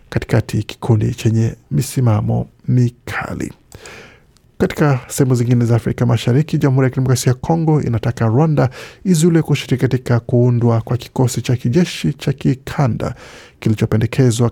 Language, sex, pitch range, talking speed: Swahili, male, 115-140 Hz, 120 wpm